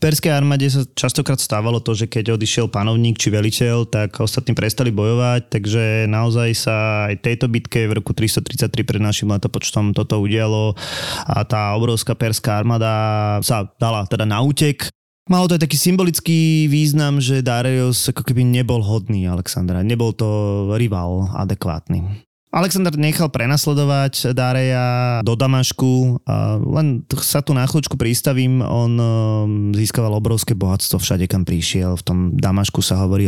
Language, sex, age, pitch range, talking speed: Slovak, male, 20-39, 105-125 Hz, 150 wpm